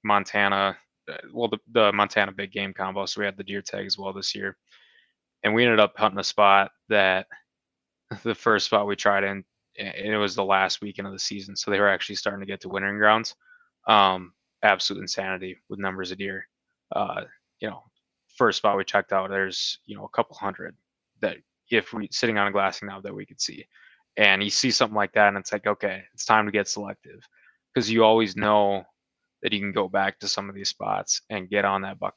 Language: English